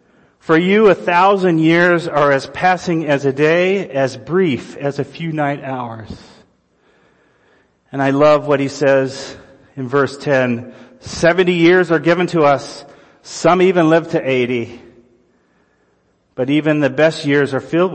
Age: 40-59